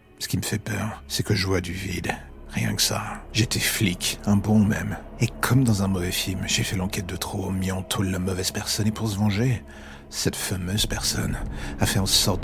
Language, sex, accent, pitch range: French, male, French, 90-105 Hz